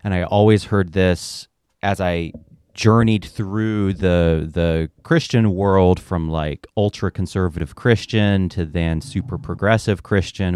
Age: 30-49